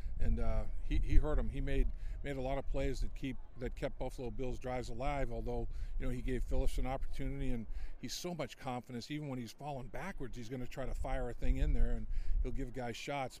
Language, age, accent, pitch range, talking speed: English, 50-69, American, 115-145 Hz, 235 wpm